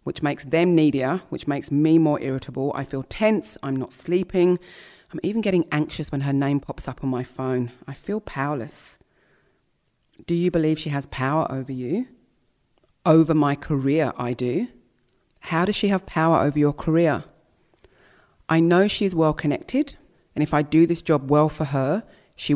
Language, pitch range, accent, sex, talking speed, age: English, 135-165 Hz, British, female, 175 wpm, 30-49